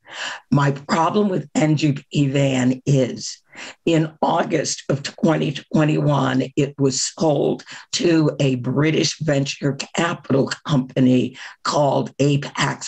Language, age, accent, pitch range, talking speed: English, 50-69, American, 135-160 Hz, 100 wpm